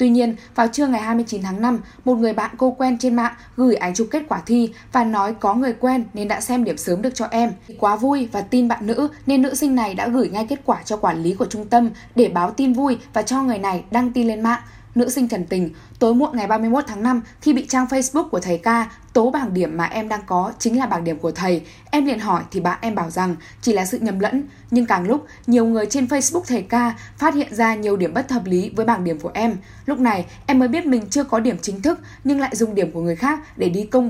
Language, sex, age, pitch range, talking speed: Vietnamese, female, 10-29, 205-255 Hz, 270 wpm